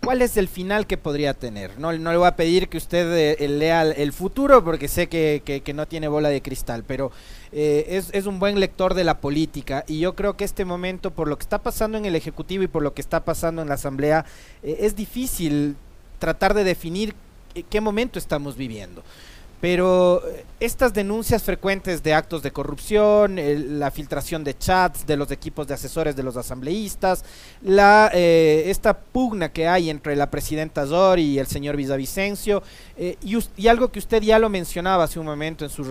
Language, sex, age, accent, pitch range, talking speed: Spanish, male, 30-49, Mexican, 145-195 Hz, 200 wpm